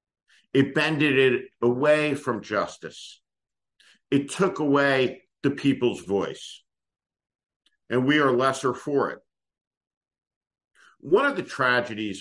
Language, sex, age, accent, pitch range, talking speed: English, male, 50-69, American, 110-145 Hz, 110 wpm